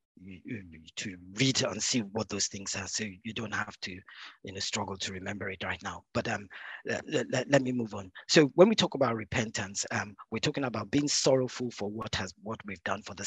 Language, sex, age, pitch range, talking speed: English, male, 40-59, 105-130 Hz, 220 wpm